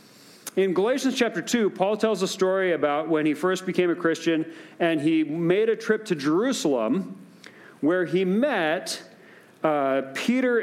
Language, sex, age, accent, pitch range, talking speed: English, male, 40-59, American, 170-235 Hz, 150 wpm